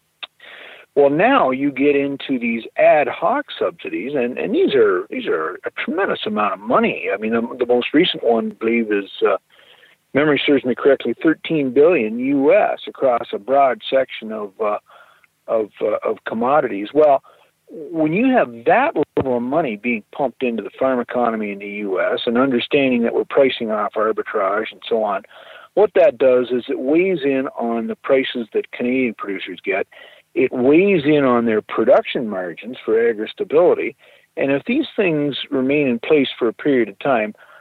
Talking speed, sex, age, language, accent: 180 wpm, male, 50-69, English, American